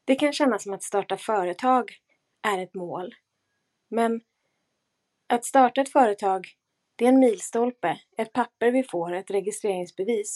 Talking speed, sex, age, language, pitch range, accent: 145 wpm, female, 30-49, Swedish, 195-250 Hz, native